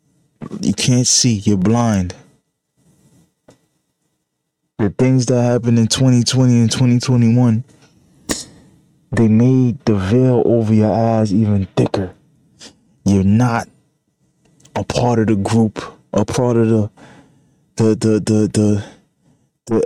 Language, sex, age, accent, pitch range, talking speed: English, male, 20-39, American, 100-115 Hz, 120 wpm